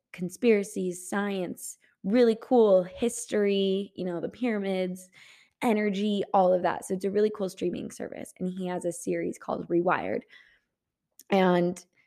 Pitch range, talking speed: 175-210 Hz, 140 wpm